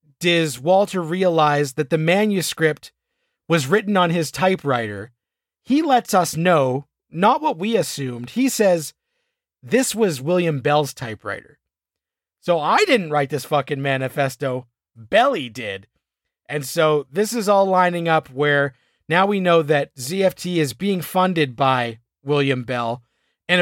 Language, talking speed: English, 140 wpm